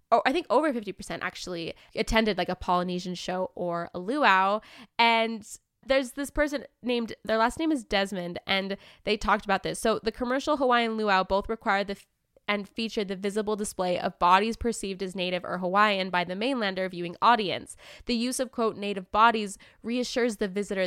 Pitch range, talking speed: 190-230 Hz, 180 wpm